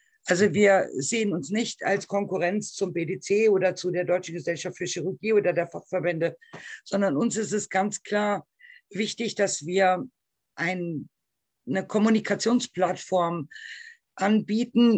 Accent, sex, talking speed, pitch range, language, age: German, female, 125 wpm, 180-220 Hz, German, 50-69